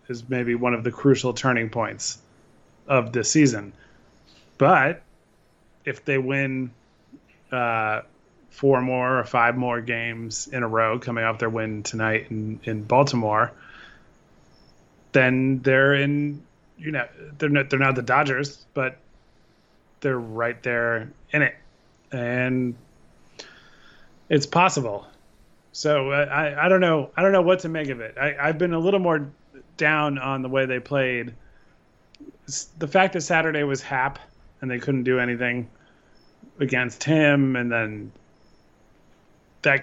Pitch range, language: 115-140 Hz, English